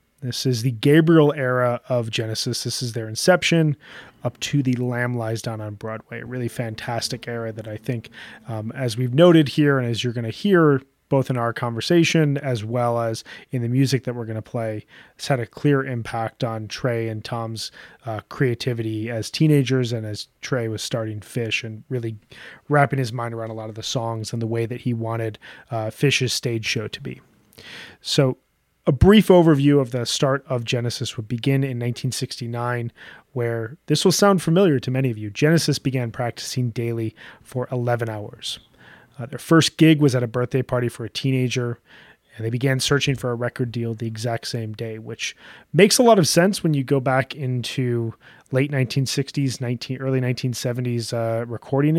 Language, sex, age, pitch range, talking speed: English, male, 30-49, 115-135 Hz, 190 wpm